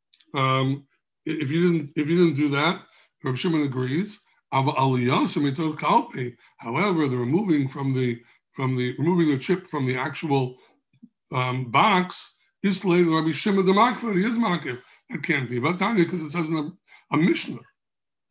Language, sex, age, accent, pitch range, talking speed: English, male, 60-79, American, 135-170 Hz, 150 wpm